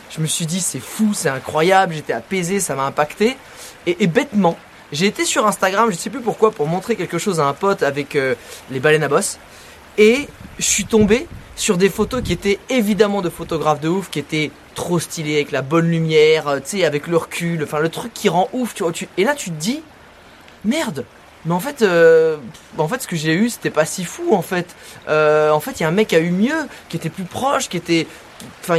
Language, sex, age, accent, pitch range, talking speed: French, male, 20-39, French, 160-220 Hz, 240 wpm